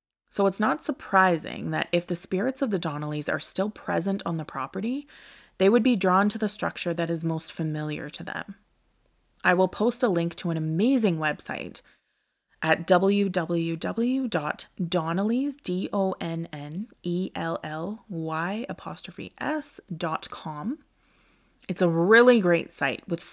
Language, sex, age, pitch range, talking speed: English, female, 20-39, 165-205 Hz, 120 wpm